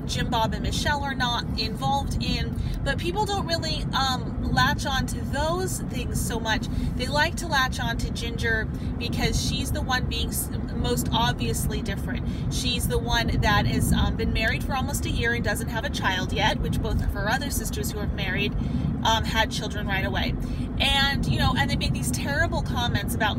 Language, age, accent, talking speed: English, 30-49, American, 200 wpm